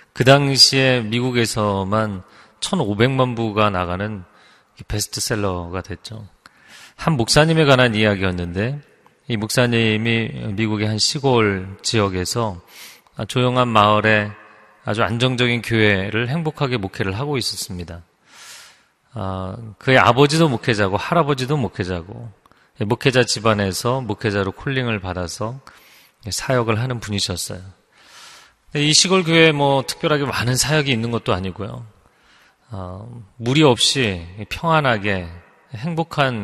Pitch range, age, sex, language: 100-125 Hz, 30-49, male, Korean